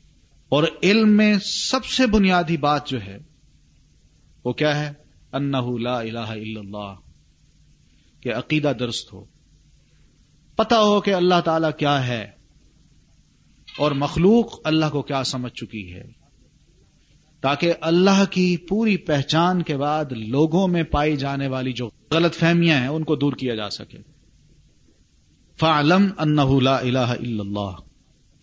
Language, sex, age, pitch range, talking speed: Urdu, male, 40-59, 125-170 Hz, 135 wpm